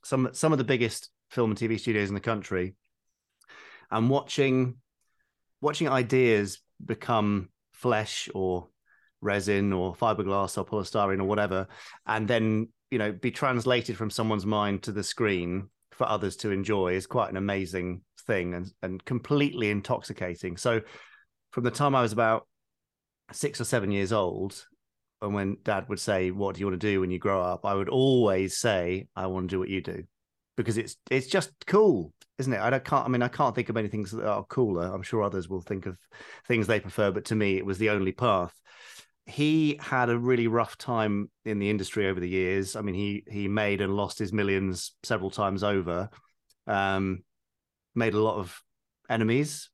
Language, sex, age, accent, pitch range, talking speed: English, male, 30-49, British, 95-120 Hz, 190 wpm